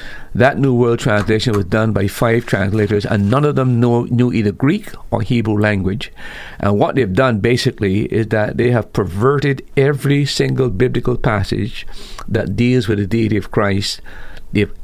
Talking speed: 170 wpm